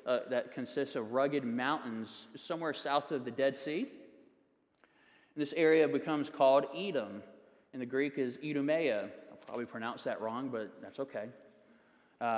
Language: English